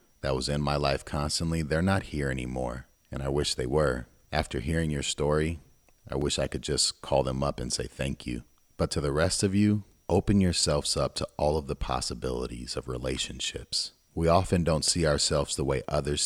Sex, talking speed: male, 205 wpm